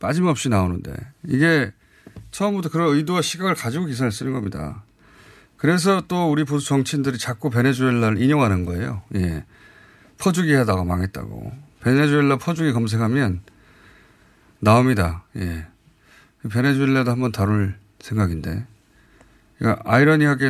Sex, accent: male, native